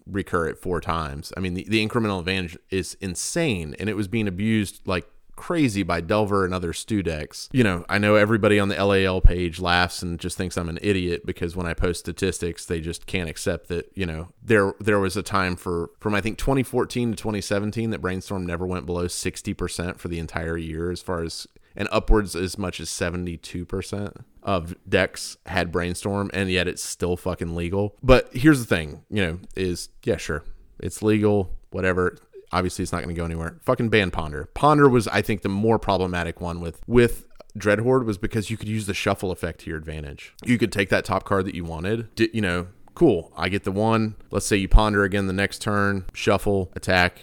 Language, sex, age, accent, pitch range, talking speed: English, male, 30-49, American, 85-105 Hz, 205 wpm